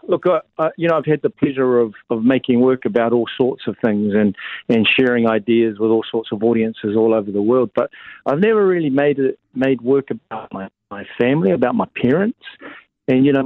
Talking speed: 220 wpm